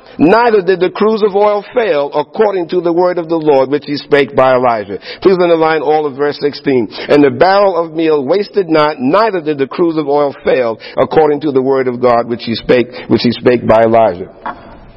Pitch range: 145-195 Hz